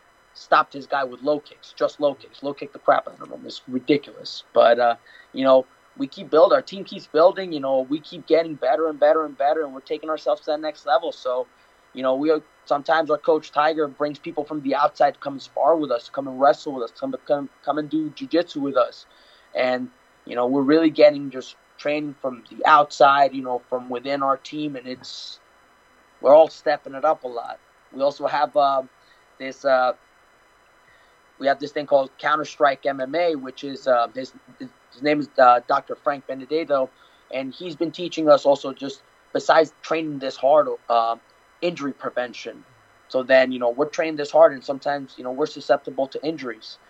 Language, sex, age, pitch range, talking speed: English, male, 20-39, 130-150 Hz, 205 wpm